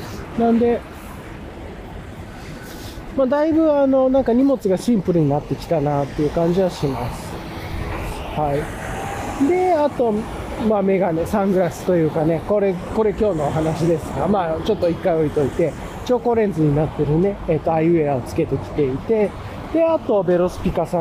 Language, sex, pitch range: Japanese, male, 145-205 Hz